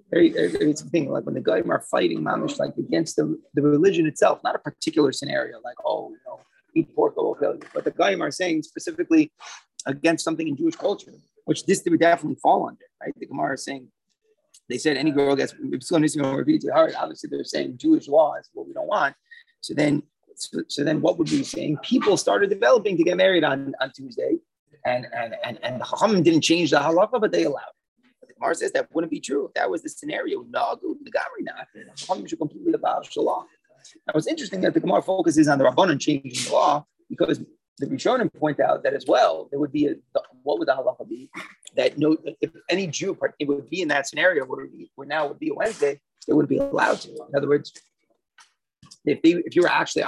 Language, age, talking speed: English, 30-49, 220 wpm